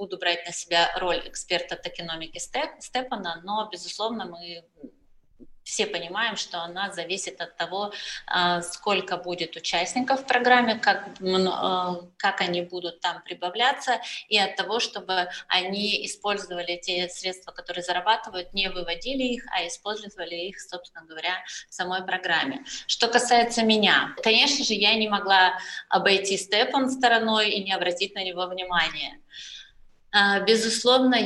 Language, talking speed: Russian, 130 wpm